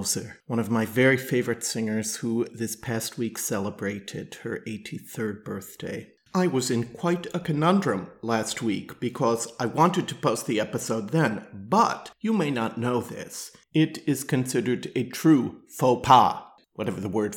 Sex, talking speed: male, 160 wpm